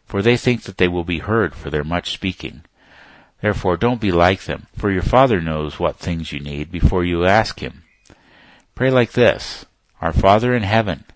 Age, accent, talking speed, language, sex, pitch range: 50-69, American, 195 wpm, English, male, 85-110 Hz